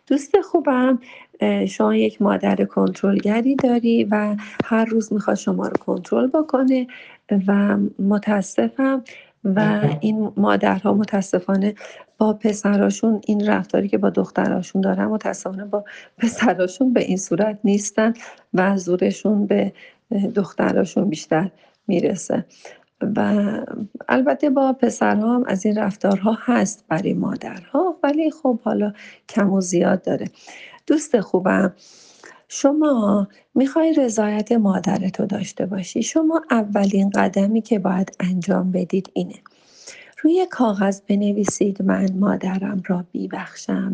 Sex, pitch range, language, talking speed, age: female, 190-245 Hz, Persian, 110 wpm, 40-59